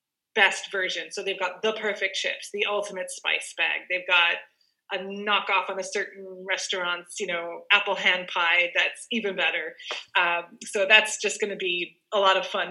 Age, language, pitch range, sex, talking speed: 20-39, English, 195-255 Hz, female, 185 wpm